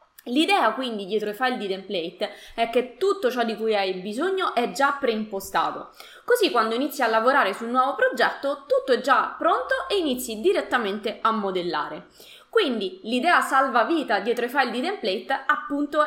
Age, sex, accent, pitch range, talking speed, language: 20-39, female, native, 220-305 Hz, 170 wpm, Italian